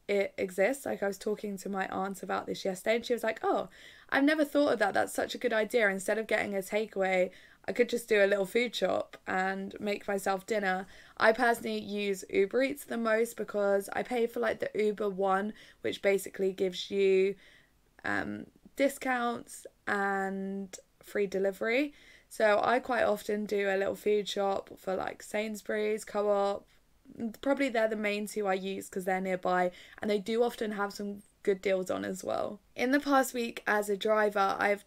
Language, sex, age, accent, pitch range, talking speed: English, female, 10-29, British, 195-235 Hz, 190 wpm